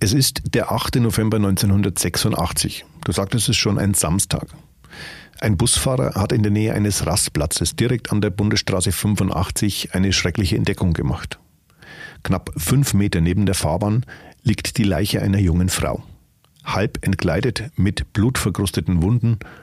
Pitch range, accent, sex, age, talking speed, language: 90-110 Hz, German, male, 40-59, 145 wpm, German